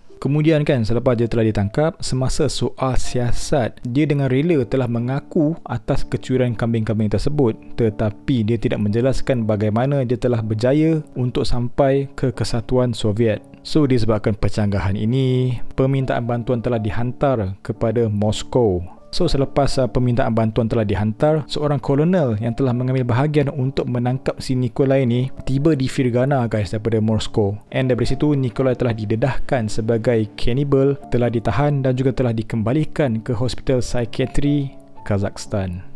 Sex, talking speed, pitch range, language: male, 140 wpm, 110-135 Hz, Malay